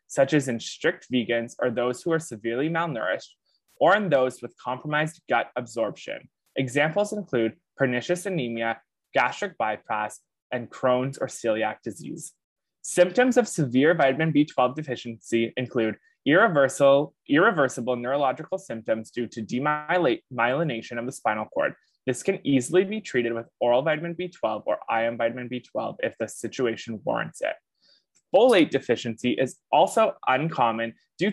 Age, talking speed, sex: 20-39, 135 wpm, male